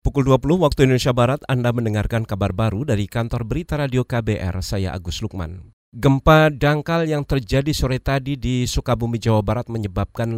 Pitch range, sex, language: 105-130 Hz, male, Indonesian